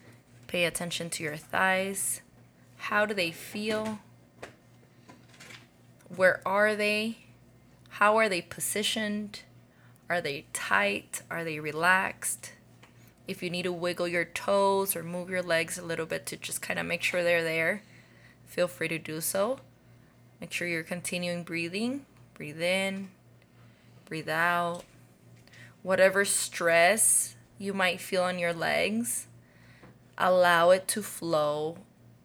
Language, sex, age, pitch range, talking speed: English, female, 20-39, 165-195 Hz, 130 wpm